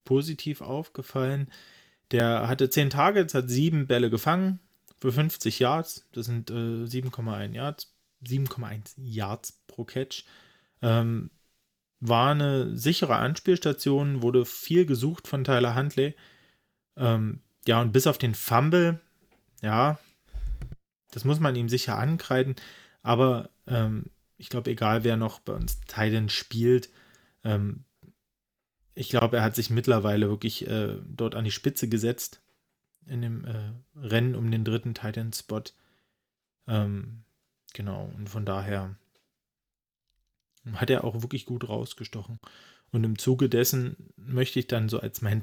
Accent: German